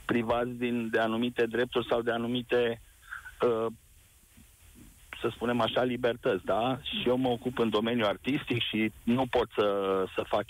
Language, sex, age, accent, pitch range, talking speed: Romanian, male, 50-69, native, 115-145 Hz, 155 wpm